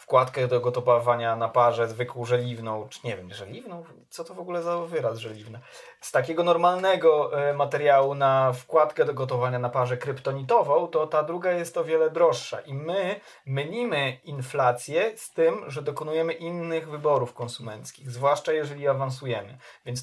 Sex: male